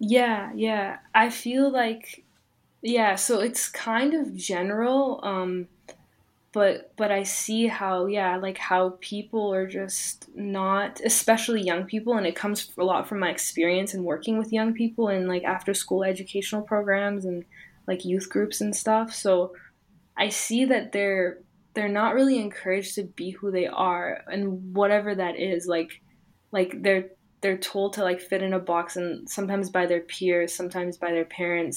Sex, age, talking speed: female, 10-29, 170 wpm